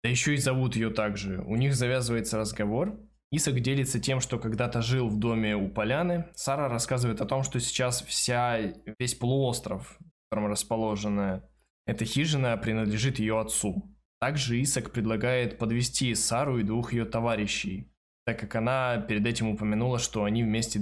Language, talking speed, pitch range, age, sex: Russian, 160 wpm, 110-130 Hz, 20-39, male